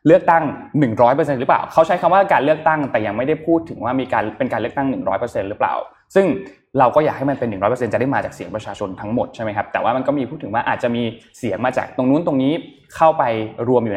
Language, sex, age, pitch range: Thai, male, 20-39, 120-170 Hz